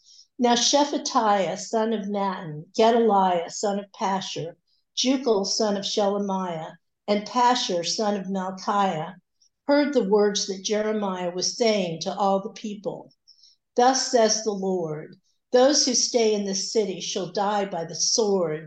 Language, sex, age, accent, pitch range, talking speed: English, female, 60-79, American, 190-230 Hz, 140 wpm